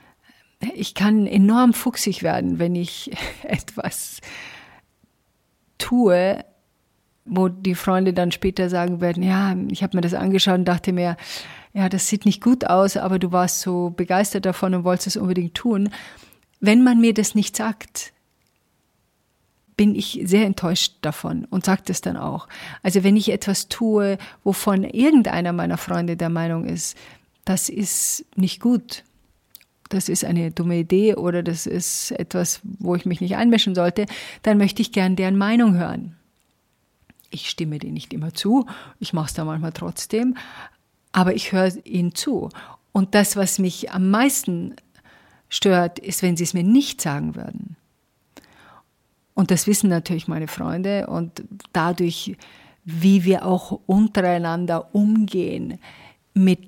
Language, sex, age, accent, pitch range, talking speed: German, female, 40-59, German, 175-205 Hz, 150 wpm